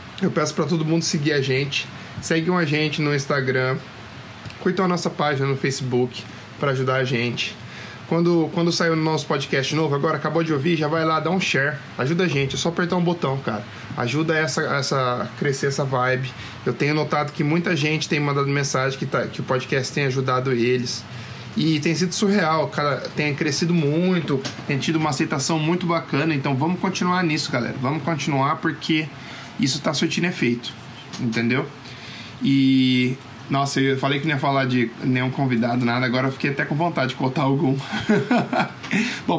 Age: 20-39